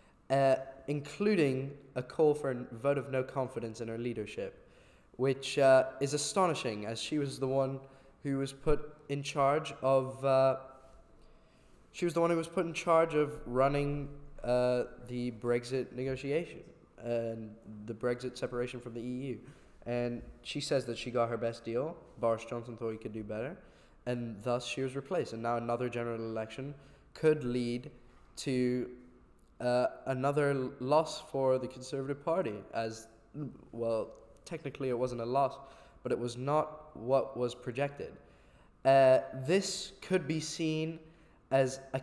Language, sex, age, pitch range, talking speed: English, male, 20-39, 120-140 Hz, 155 wpm